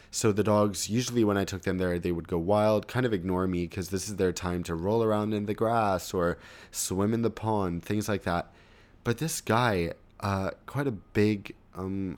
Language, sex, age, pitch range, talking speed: English, male, 20-39, 95-115 Hz, 215 wpm